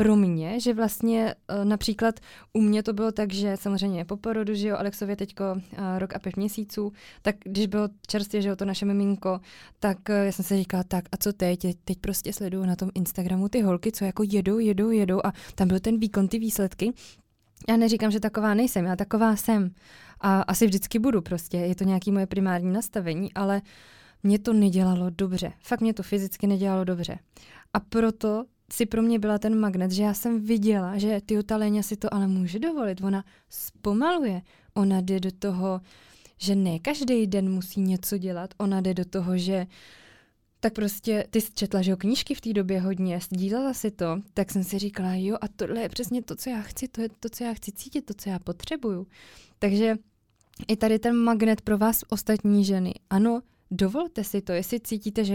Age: 20-39